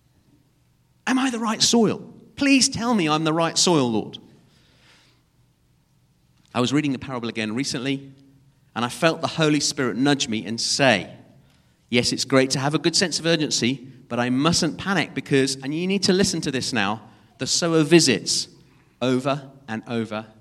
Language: English